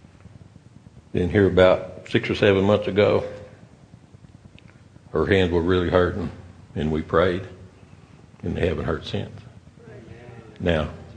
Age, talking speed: 60-79, 120 wpm